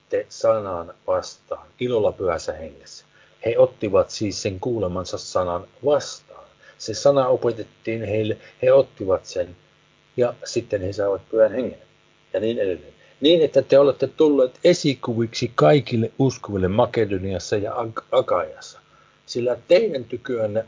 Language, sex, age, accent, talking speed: Finnish, male, 50-69, native, 130 wpm